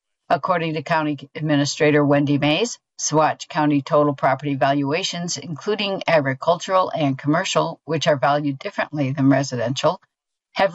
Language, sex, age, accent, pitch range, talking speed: English, female, 60-79, American, 145-175 Hz, 125 wpm